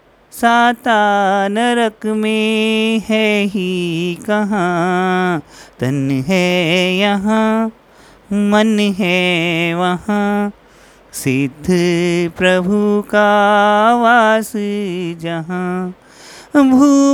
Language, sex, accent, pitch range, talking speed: Hindi, male, native, 180-230 Hz, 65 wpm